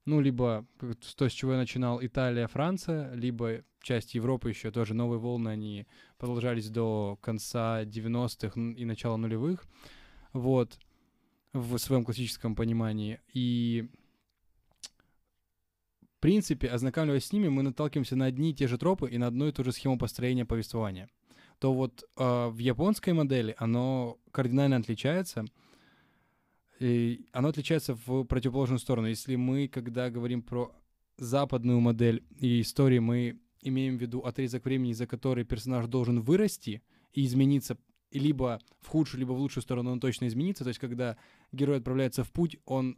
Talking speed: 150 wpm